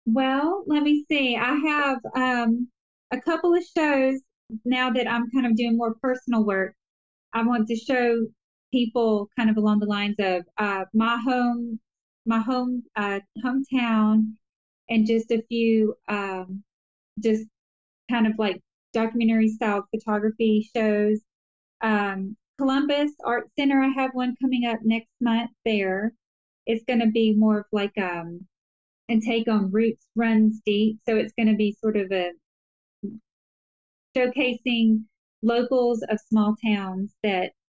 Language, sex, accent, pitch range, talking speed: English, female, American, 205-240 Hz, 145 wpm